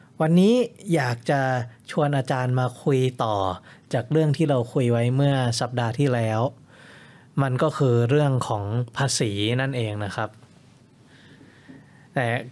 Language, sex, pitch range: Thai, male, 120-150 Hz